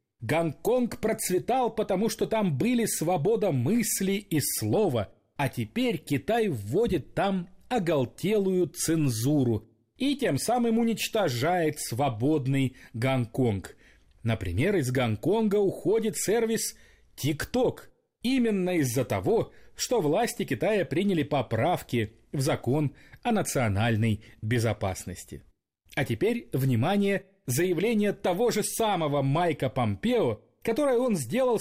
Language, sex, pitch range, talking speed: Russian, male, 120-205 Hz, 105 wpm